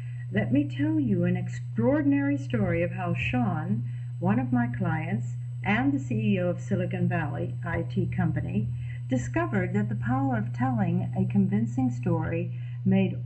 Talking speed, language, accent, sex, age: 145 wpm, English, American, female, 50-69